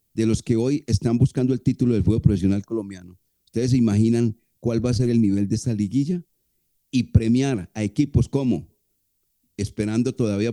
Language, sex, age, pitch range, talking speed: Spanish, male, 40-59, 105-130 Hz, 175 wpm